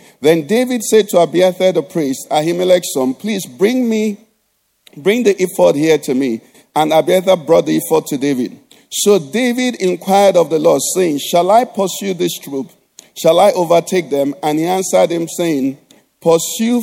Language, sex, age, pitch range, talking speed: English, male, 50-69, 165-215 Hz, 170 wpm